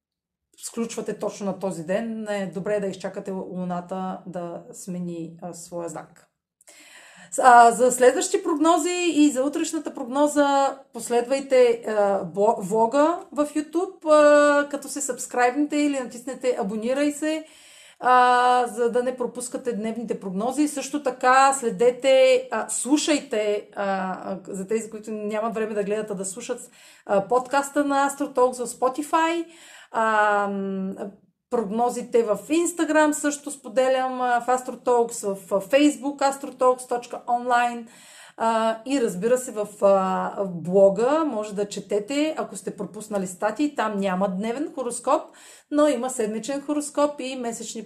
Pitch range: 205-275 Hz